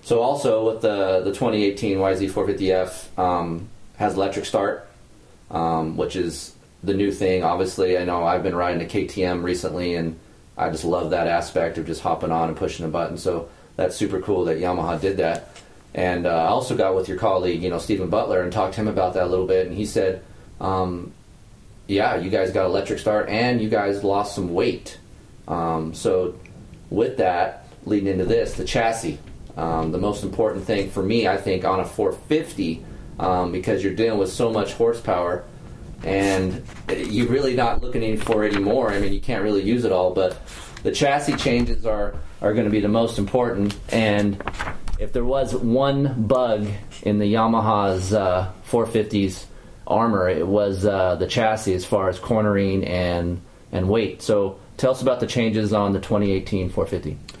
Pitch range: 90-110 Hz